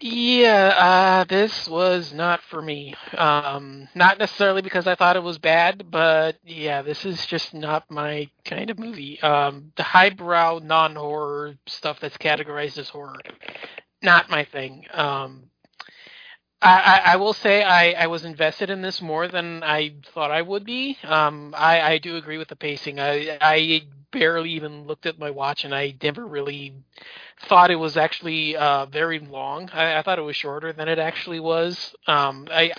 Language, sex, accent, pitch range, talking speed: English, male, American, 150-185 Hz, 180 wpm